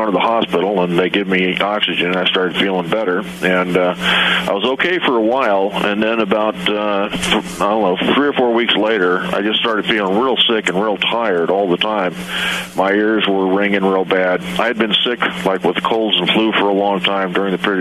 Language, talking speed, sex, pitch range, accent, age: English, 225 wpm, male, 95-105 Hz, American, 40-59